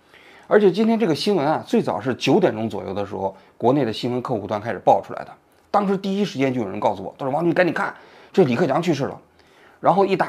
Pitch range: 115-170 Hz